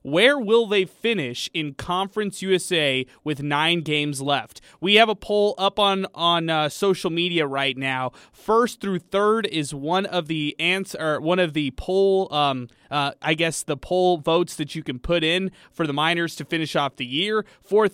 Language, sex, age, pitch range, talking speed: English, male, 20-39, 155-195 Hz, 185 wpm